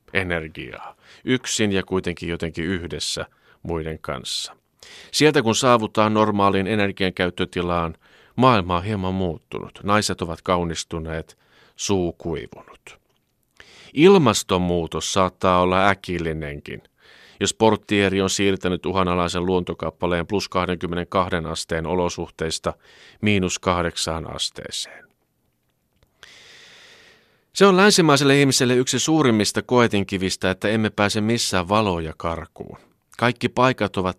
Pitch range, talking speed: 85-110 Hz, 95 wpm